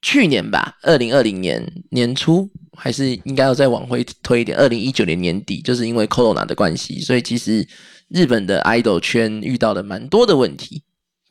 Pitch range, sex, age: 120-145 Hz, male, 20-39